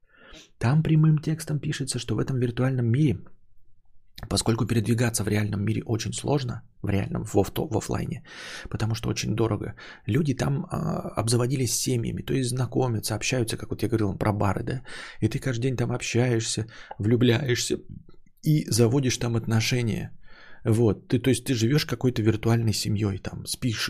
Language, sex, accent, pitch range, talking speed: Russian, male, native, 105-130 Hz, 155 wpm